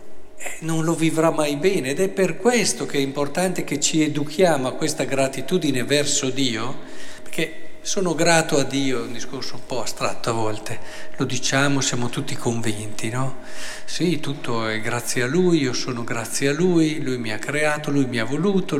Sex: male